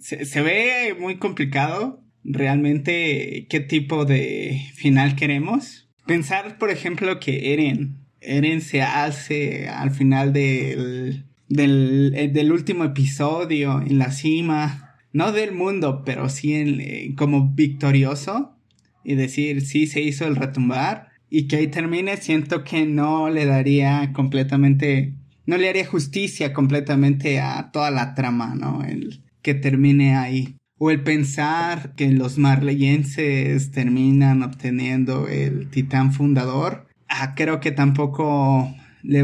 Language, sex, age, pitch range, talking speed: Spanish, male, 20-39, 135-155 Hz, 130 wpm